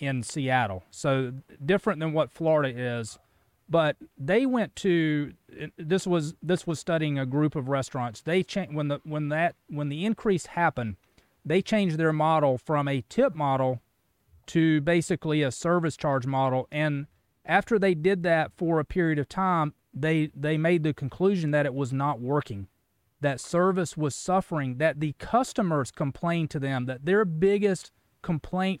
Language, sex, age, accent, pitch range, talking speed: English, male, 30-49, American, 140-180 Hz, 165 wpm